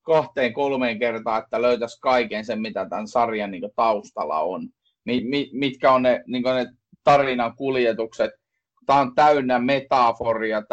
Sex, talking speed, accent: male, 145 wpm, native